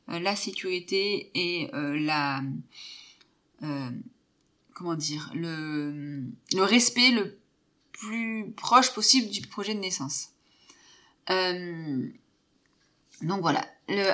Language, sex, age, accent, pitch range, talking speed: French, female, 30-49, French, 165-215 Hz, 100 wpm